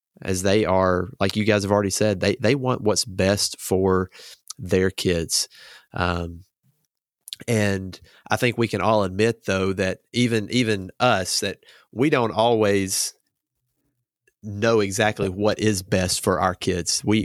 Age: 30-49